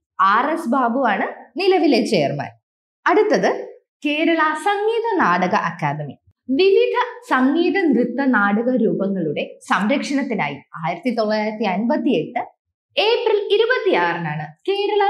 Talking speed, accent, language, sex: 95 wpm, native, Malayalam, female